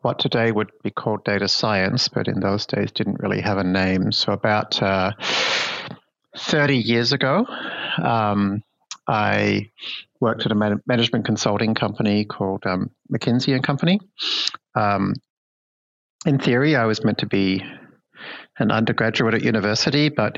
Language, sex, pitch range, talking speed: English, male, 105-130 Hz, 140 wpm